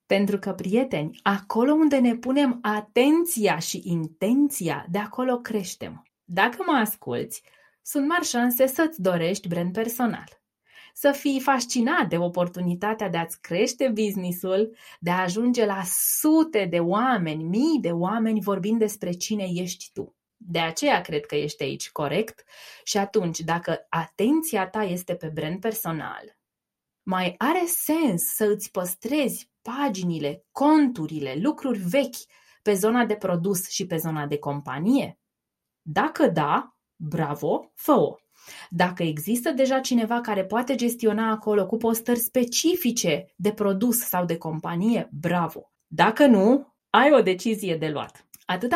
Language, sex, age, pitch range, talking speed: Romanian, female, 20-39, 175-250 Hz, 135 wpm